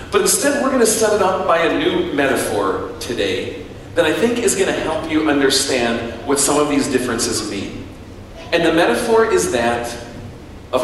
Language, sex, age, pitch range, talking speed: English, male, 40-59, 105-150 Hz, 190 wpm